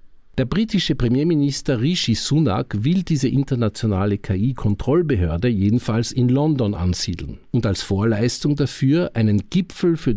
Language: German